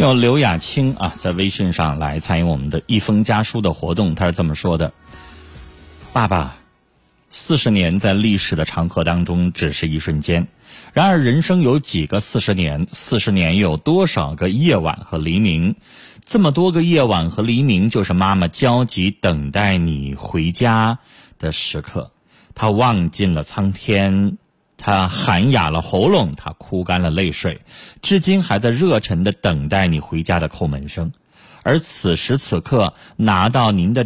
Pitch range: 85-120 Hz